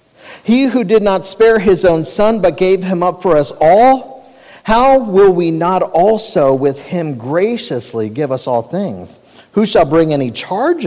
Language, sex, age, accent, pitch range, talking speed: English, male, 50-69, American, 160-215 Hz, 175 wpm